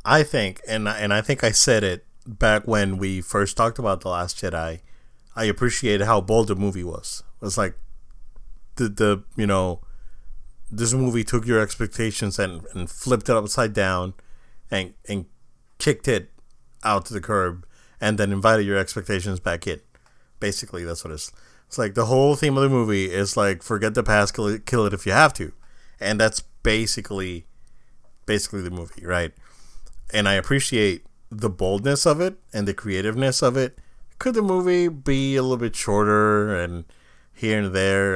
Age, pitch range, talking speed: 30-49, 95-115 Hz, 180 wpm